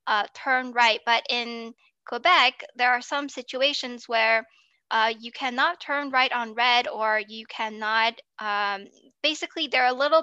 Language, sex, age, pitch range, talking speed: English, female, 10-29, 225-265 Hz, 160 wpm